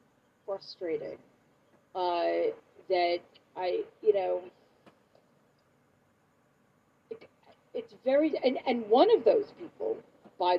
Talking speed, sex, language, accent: 85 wpm, female, English, American